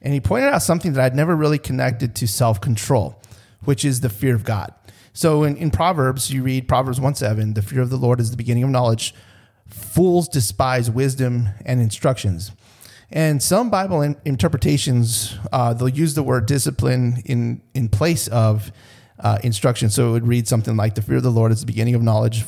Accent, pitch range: American, 115-140 Hz